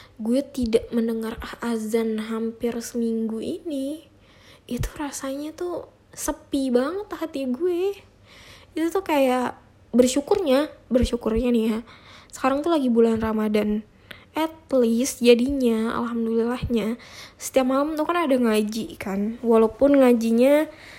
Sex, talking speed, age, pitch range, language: female, 110 wpm, 20-39, 220-265 Hz, Indonesian